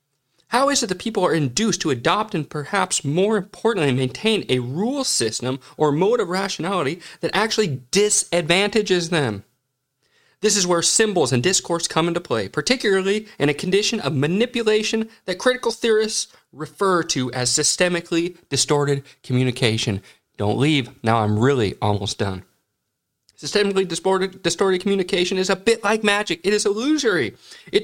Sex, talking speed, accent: male, 150 wpm, American